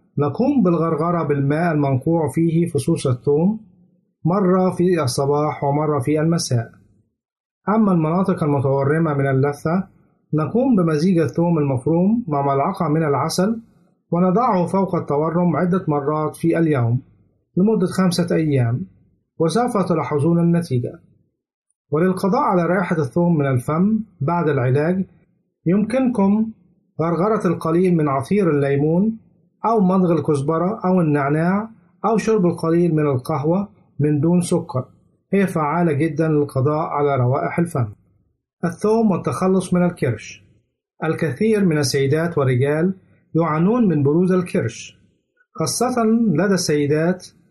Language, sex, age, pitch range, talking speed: Arabic, male, 50-69, 145-185 Hz, 110 wpm